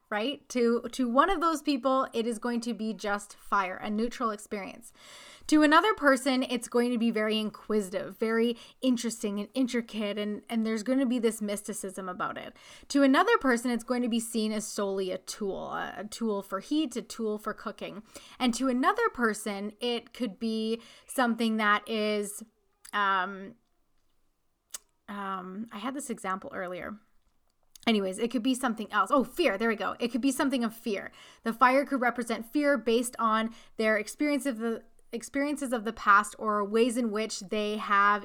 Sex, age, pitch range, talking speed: female, 20-39, 210-255 Hz, 175 wpm